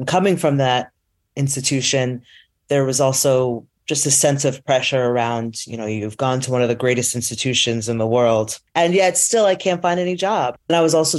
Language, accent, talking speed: English, American, 205 wpm